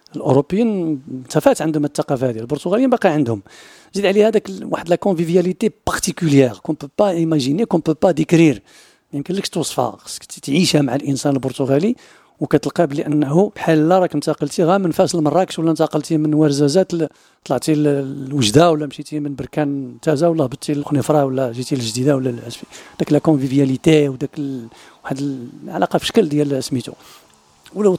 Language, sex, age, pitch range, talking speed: French, male, 50-69, 145-170 Hz, 145 wpm